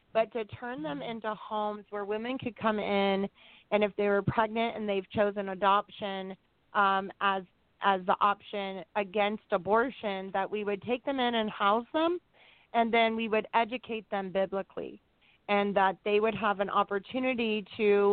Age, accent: 30-49, American